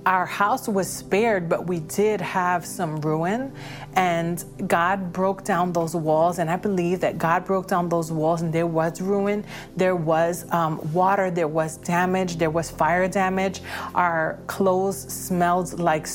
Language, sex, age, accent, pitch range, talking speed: English, female, 30-49, American, 170-195 Hz, 165 wpm